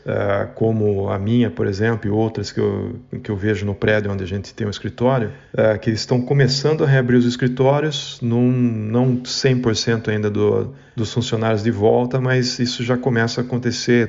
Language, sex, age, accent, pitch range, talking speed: Portuguese, male, 40-59, Brazilian, 110-125 Hz, 185 wpm